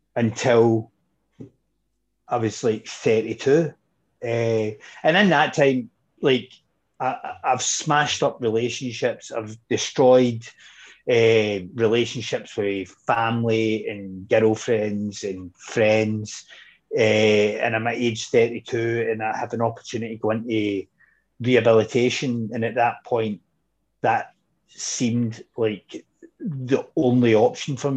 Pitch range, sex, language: 110-130 Hz, male, English